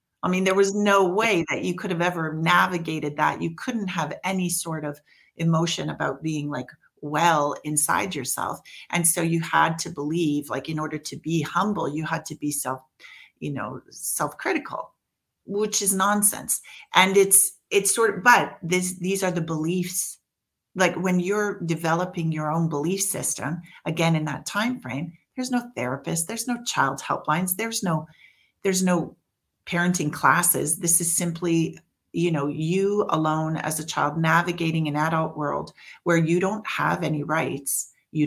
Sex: female